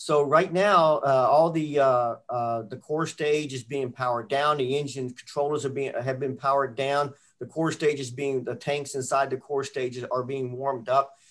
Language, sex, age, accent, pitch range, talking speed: English, male, 50-69, American, 125-145 Hz, 205 wpm